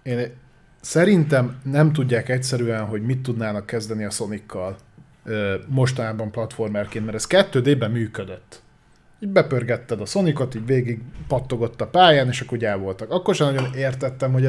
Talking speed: 145 wpm